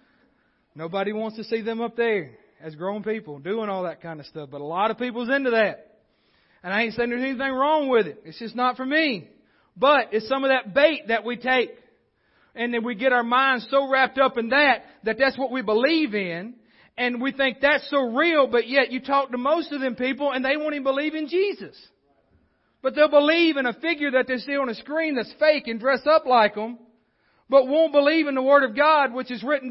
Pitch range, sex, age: 215-275 Hz, male, 40-59